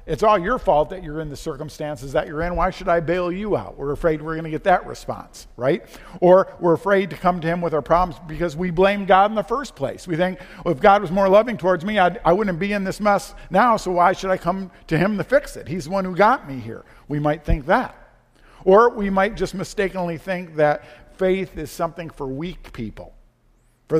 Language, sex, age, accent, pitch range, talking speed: English, male, 50-69, American, 145-185 Hz, 245 wpm